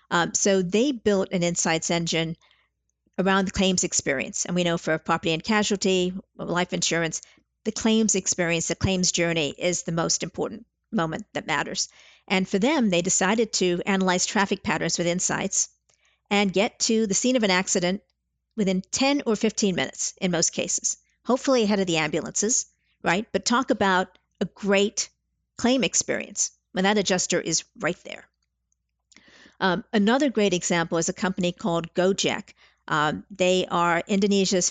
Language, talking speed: English, 160 wpm